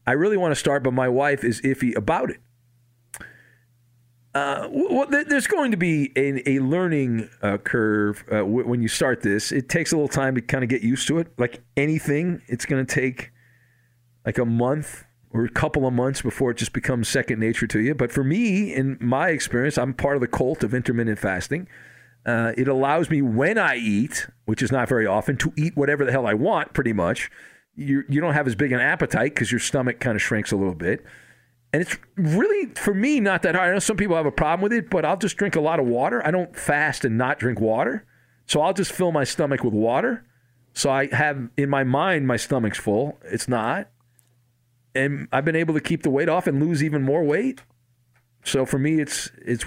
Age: 40-59